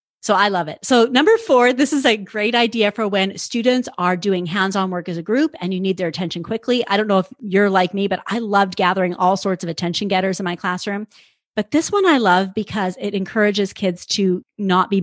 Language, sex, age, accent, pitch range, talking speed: English, female, 40-59, American, 180-220 Hz, 235 wpm